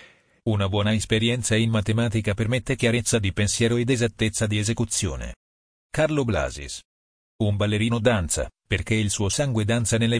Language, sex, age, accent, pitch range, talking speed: Italian, male, 40-59, native, 95-120 Hz, 140 wpm